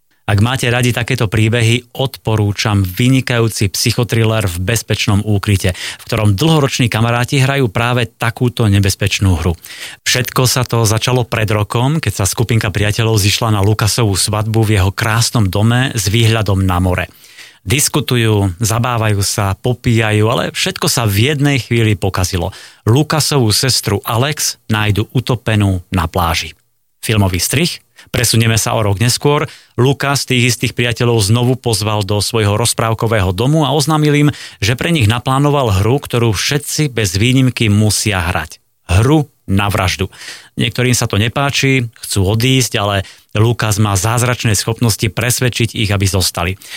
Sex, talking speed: male, 140 wpm